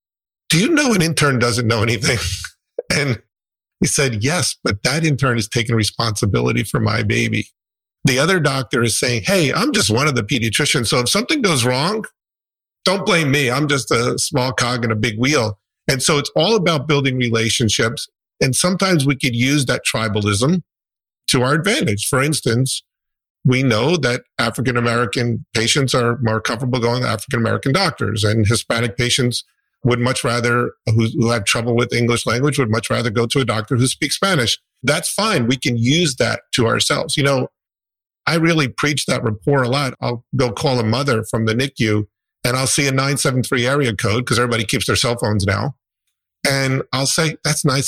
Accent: American